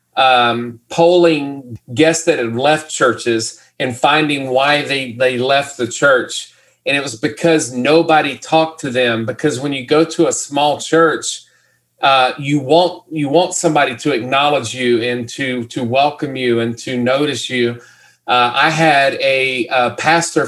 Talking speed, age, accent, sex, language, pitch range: 160 wpm, 40-59, American, male, English, 125-160 Hz